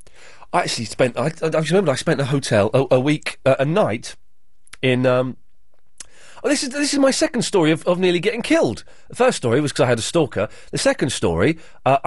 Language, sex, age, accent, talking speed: English, male, 30-49, British, 215 wpm